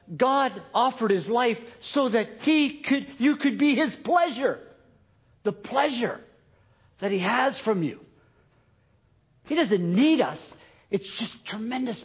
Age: 50-69